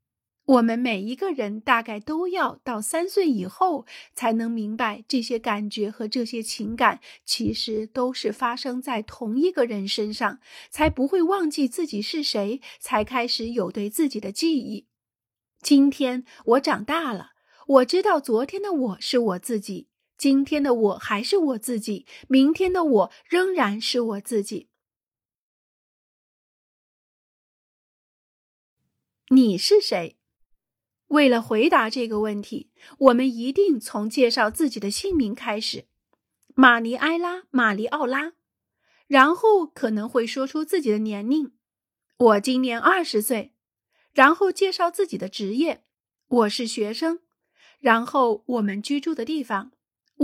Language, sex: Chinese, female